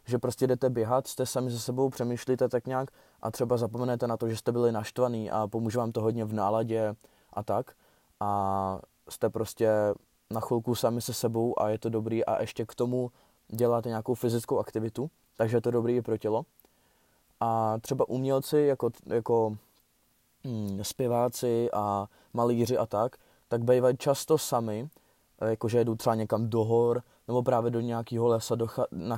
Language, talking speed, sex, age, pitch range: Czech, 175 wpm, male, 20-39, 115-125 Hz